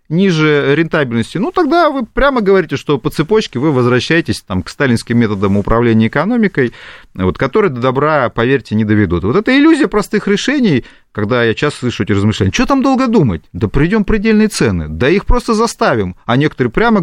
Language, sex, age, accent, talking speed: Russian, male, 30-49, native, 175 wpm